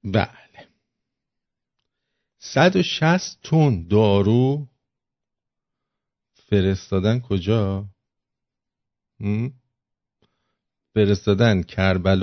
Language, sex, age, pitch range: English, male, 50-69, 95-120 Hz